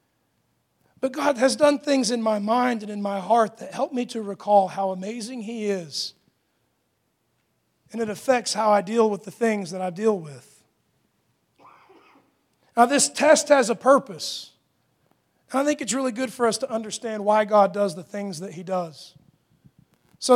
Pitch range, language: 200-245 Hz, English